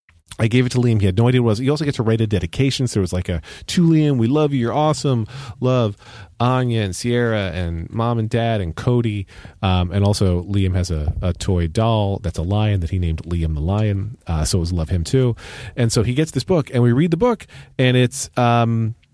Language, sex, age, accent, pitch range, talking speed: English, male, 30-49, American, 100-130 Hz, 250 wpm